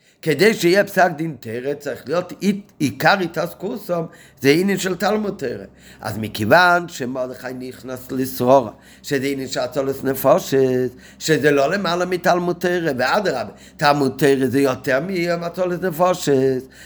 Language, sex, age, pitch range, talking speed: Hebrew, male, 50-69, 125-180 Hz, 130 wpm